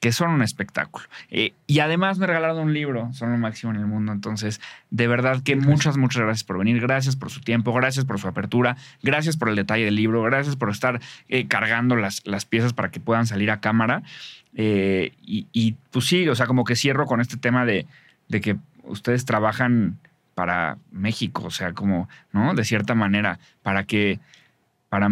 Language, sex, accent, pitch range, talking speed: Spanish, male, Mexican, 105-125 Hz, 200 wpm